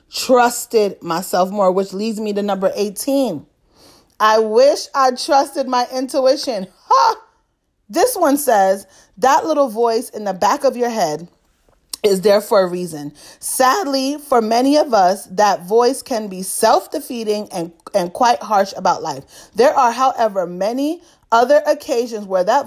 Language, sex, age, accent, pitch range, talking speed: English, female, 30-49, American, 195-270 Hz, 150 wpm